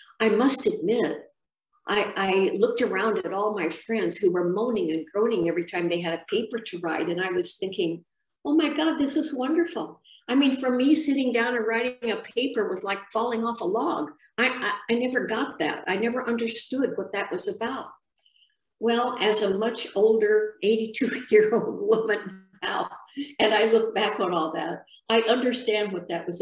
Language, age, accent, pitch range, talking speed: English, 60-79, American, 195-245 Hz, 190 wpm